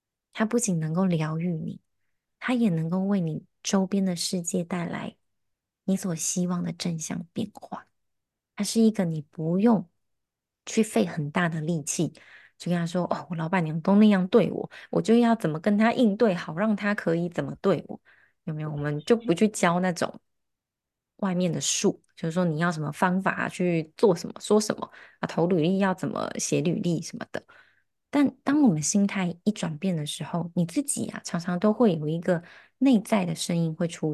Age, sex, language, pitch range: 20-39, female, Chinese, 165-215 Hz